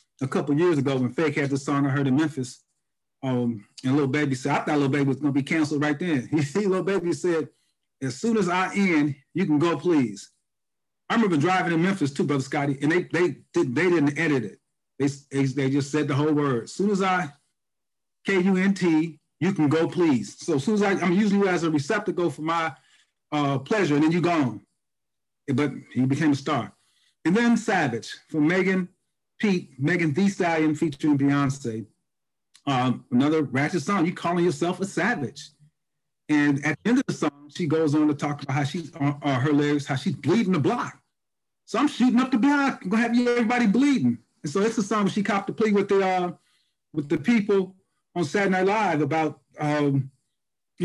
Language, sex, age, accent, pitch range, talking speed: English, male, 30-49, American, 145-185 Hz, 205 wpm